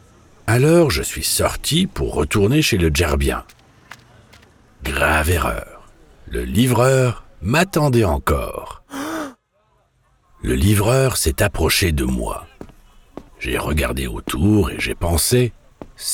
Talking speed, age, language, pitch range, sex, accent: 105 wpm, 60-79, German, 75-125 Hz, male, French